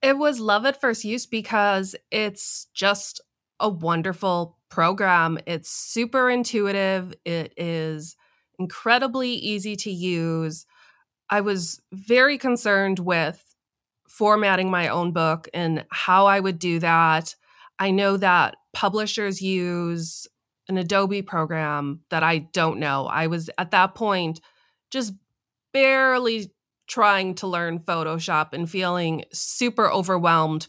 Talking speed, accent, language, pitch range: 125 wpm, American, English, 170-210 Hz